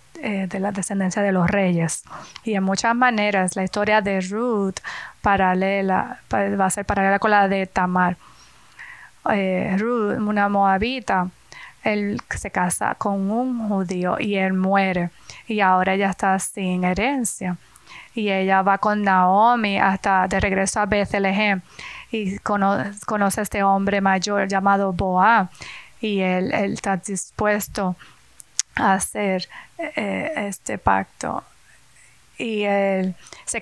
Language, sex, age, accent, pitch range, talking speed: English, female, 20-39, American, 190-205 Hz, 130 wpm